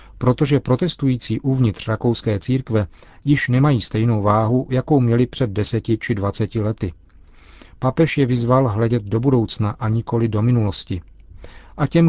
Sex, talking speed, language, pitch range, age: male, 140 wpm, Czech, 110-130 Hz, 40-59